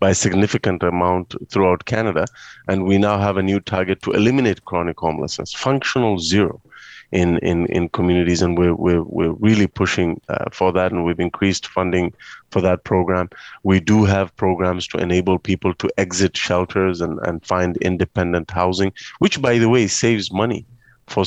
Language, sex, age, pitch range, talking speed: English, male, 30-49, 90-105 Hz, 165 wpm